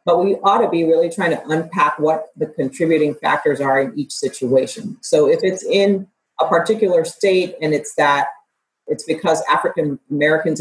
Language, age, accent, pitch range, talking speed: English, 40-59, American, 150-200 Hz, 175 wpm